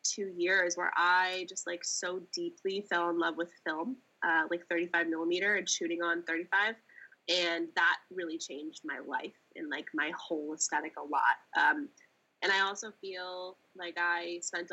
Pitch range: 175-225 Hz